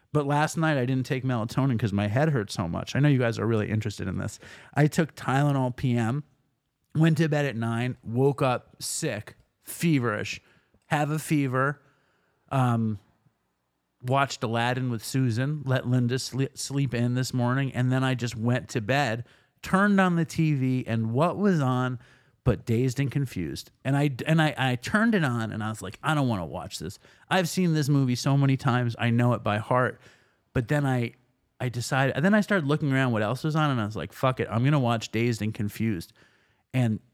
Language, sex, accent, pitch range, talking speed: English, male, American, 115-145 Hz, 205 wpm